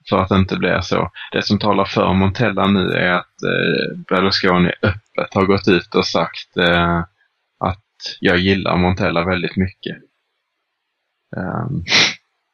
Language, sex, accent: Swedish, male, Norwegian